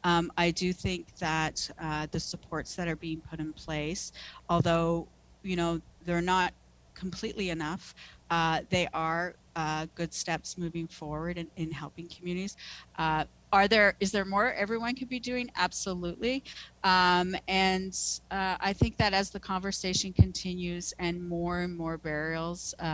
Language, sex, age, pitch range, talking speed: English, female, 40-59, 160-190 Hz, 155 wpm